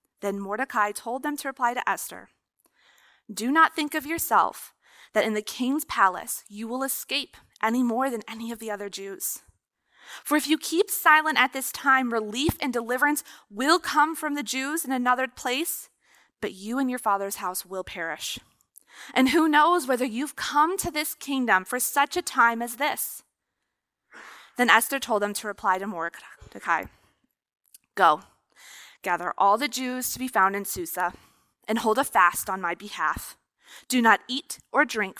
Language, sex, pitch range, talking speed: English, female, 200-275 Hz, 175 wpm